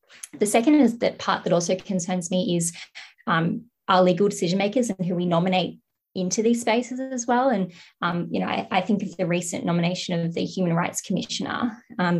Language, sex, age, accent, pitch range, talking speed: English, female, 20-39, Australian, 175-215 Hz, 200 wpm